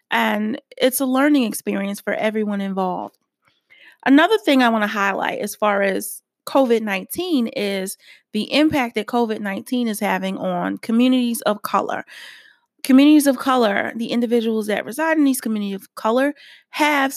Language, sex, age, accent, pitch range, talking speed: English, female, 30-49, American, 210-250 Hz, 145 wpm